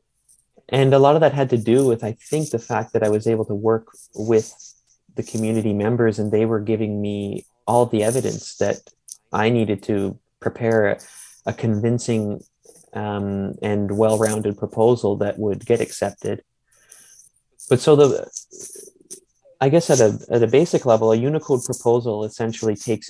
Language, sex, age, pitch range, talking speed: English, male, 30-49, 105-120 Hz, 165 wpm